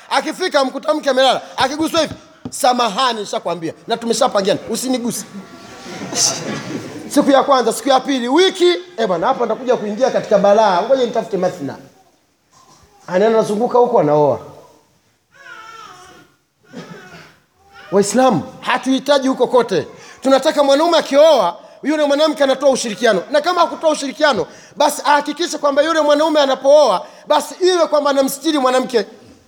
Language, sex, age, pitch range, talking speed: Swahili, male, 30-49, 220-305 Hz, 90 wpm